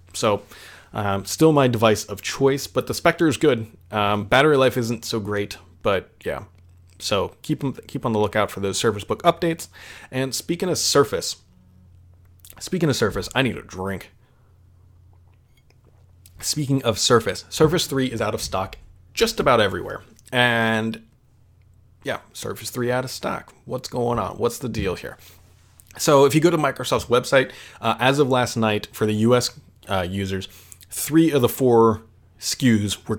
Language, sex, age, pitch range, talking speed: English, male, 30-49, 95-125 Hz, 165 wpm